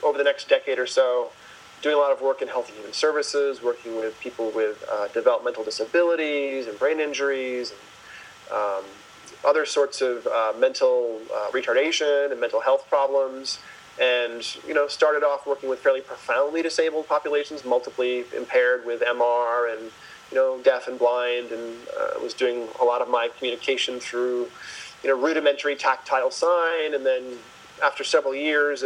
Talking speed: 165 wpm